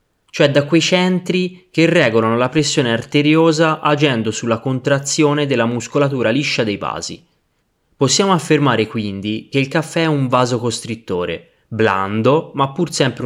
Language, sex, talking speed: Italian, male, 135 wpm